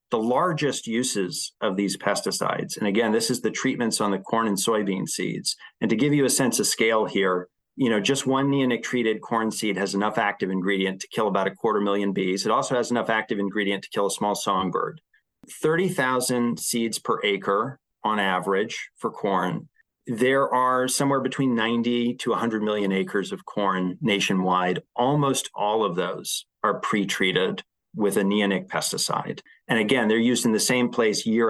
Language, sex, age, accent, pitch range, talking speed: English, male, 40-59, American, 100-130 Hz, 180 wpm